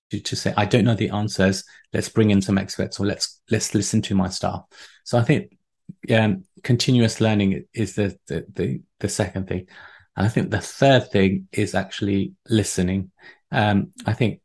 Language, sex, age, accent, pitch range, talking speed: English, male, 30-49, British, 100-120 Hz, 185 wpm